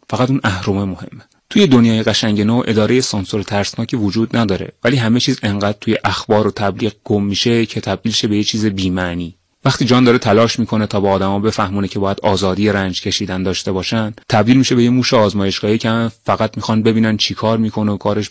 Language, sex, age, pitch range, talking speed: Persian, male, 30-49, 100-115 Hz, 200 wpm